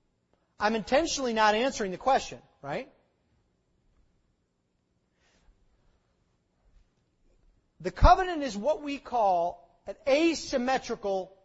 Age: 30-49